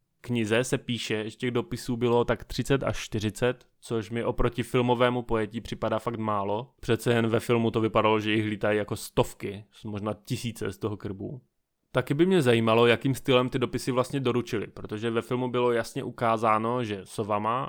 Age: 20-39